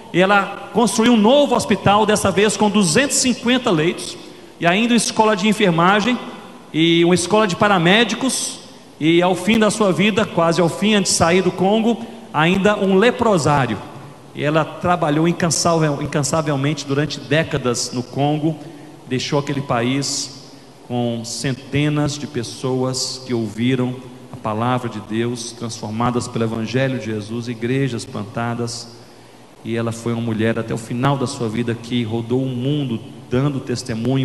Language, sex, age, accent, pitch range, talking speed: Portuguese, male, 40-59, Brazilian, 115-160 Hz, 150 wpm